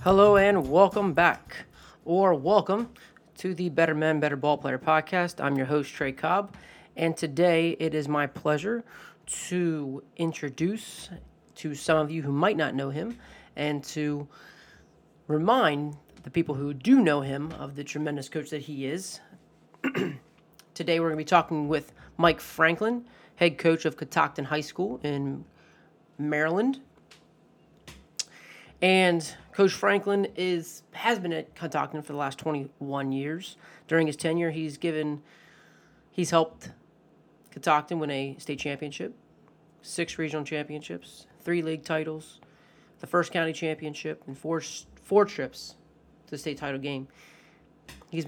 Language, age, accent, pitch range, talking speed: English, 30-49, American, 150-170 Hz, 140 wpm